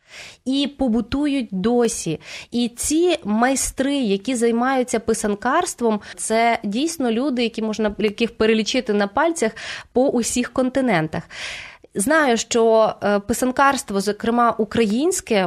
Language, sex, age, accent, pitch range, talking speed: Ukrainian, female, 20-39, native, 215-265 Hz, 105 wpm